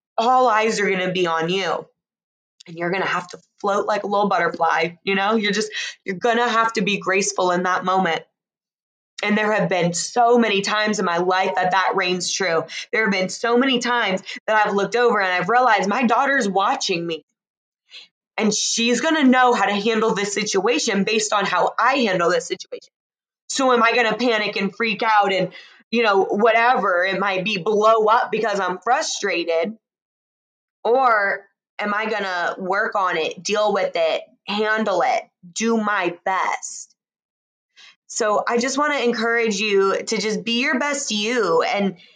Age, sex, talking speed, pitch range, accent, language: 20-39, female, 190 wpm, 190-230 Hz, American, English